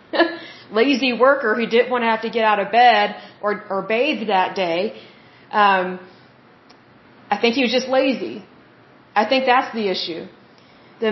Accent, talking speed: American, 165 wpm